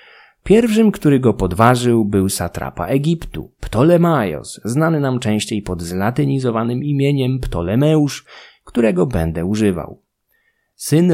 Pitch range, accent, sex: 100-135 Hz, native, male